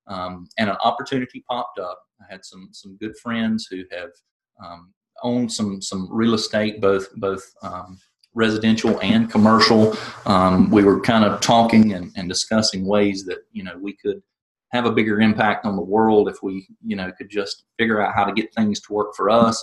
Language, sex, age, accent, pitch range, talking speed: English, male, 30-49, American, 95-110 Hz, 195 wpm